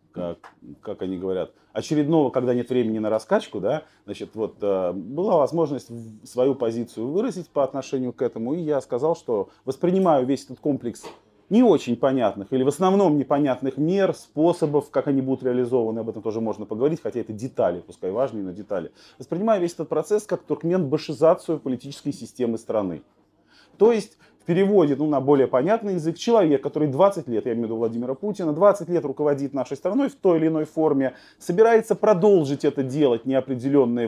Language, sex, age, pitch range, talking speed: Russian, male, 30-49, 115-165 Hz, 175 wpm